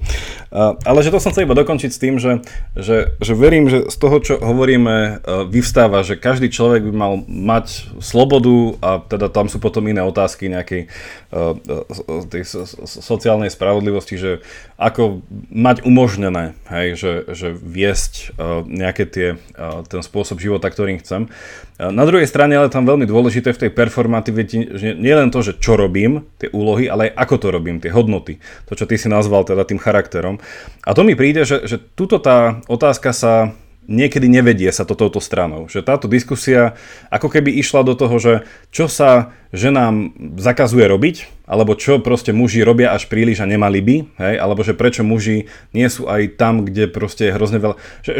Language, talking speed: Slovak, 175 wpm